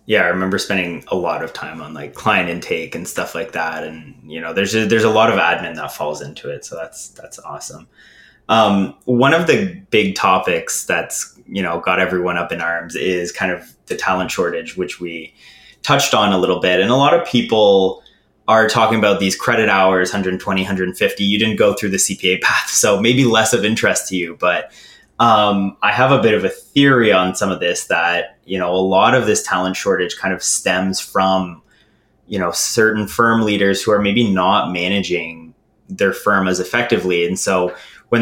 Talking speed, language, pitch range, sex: 205 wpm, English, 90-110 Hz, male